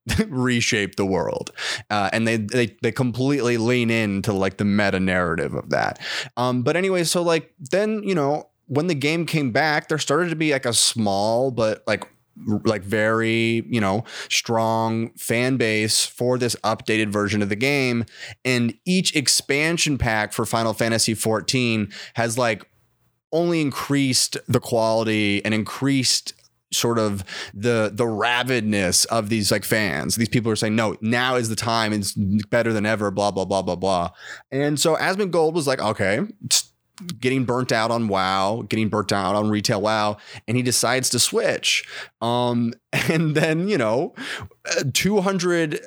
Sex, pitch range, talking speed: male, 105-135 Hz, 165 wpm